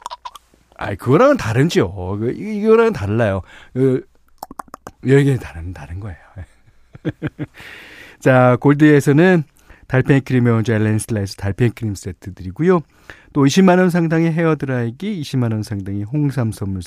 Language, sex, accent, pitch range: Korean, male, native, 95-150 Hz